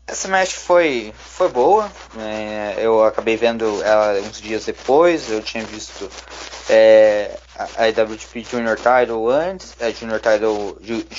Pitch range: 110-125 Hz